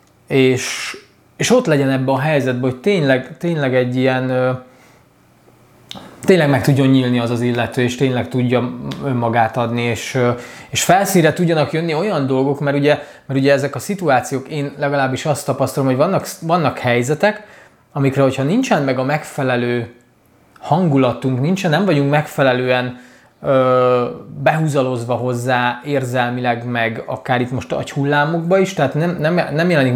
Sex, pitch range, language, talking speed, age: male, 125-150 Hz, Hungarian, 145 wpm, 20-39